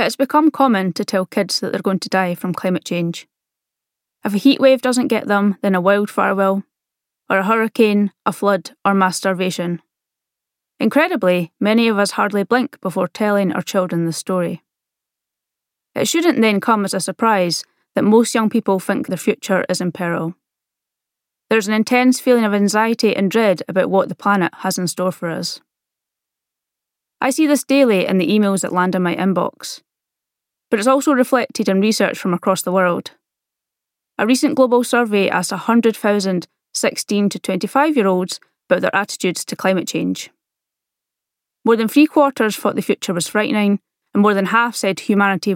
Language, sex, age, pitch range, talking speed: English, female, 20-39, 185-230 Hz, 175 wpm